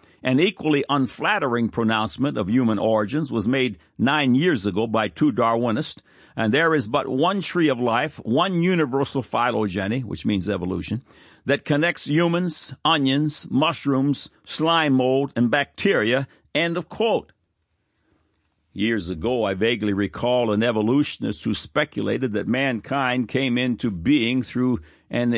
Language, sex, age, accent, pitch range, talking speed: English, male, 60-79, American, 100-135 Hz, 135 wpm